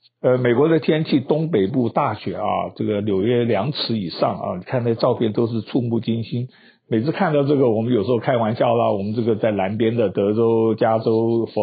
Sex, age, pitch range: male, 50-69, 110-135 Hz